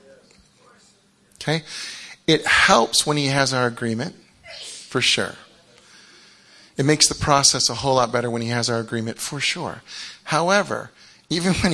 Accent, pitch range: American, 125-160 Hz